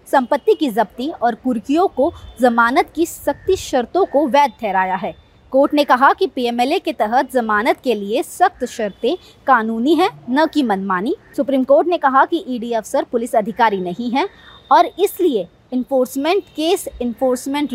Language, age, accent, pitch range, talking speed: Hindi, 20-39, native, 235-300 Hz, 160 wpm